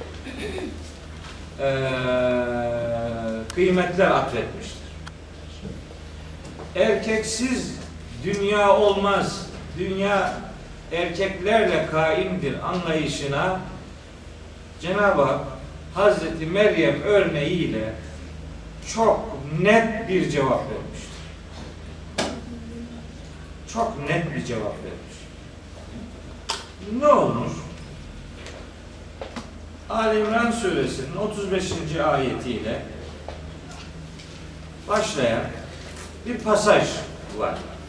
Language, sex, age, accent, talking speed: Turkish, male, 50-69, native, 55 wpm